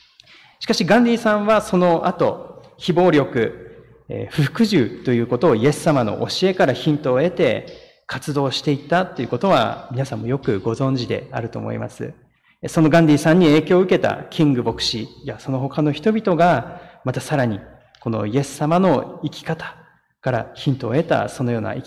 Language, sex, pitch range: Japanese, male, 125-175 Hz